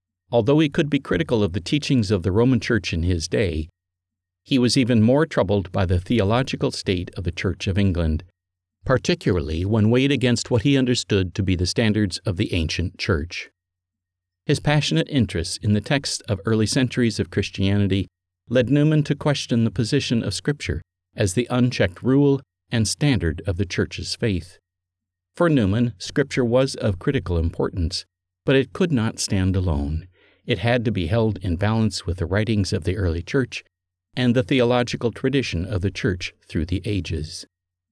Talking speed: 175 wpm